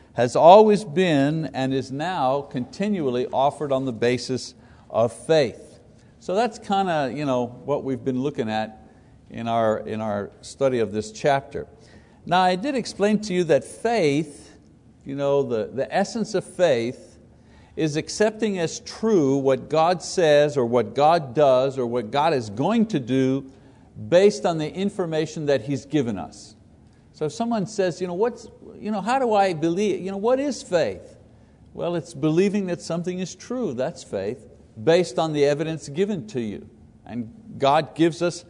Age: 60-79